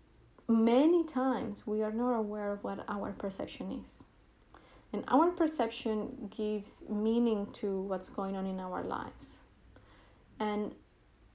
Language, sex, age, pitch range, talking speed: English, female, 20-39, 195-235 Hz, 125 wpm